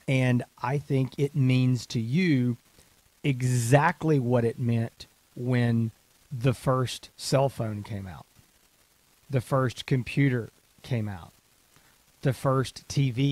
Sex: male